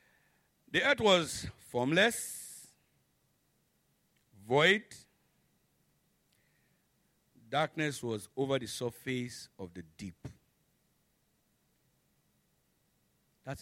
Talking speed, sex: 60 wpm, male